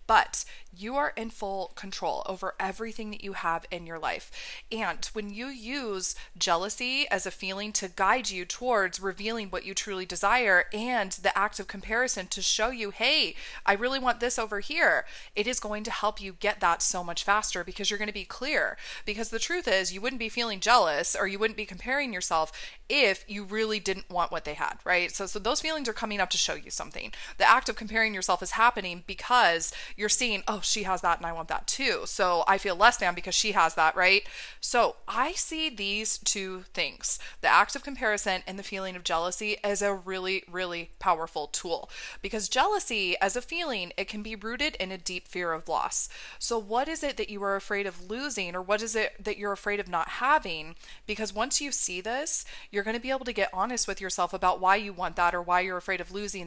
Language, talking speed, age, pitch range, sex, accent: English, 220 wpm, 20-39, 185-225 Hz, female, American